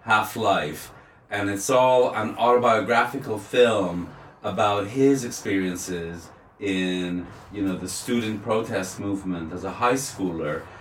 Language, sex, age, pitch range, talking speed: English, male, 30-49, 95-115 Hz, 115 wpm